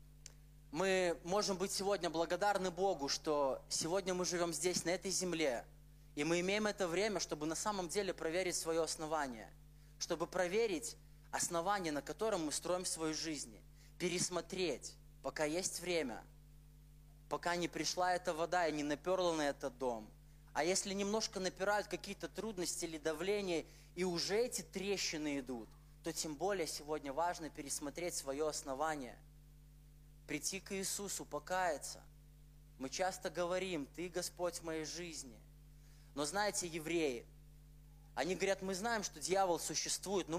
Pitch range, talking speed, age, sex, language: 150-185 Hz, 140 wpm, 20-39, male, Russian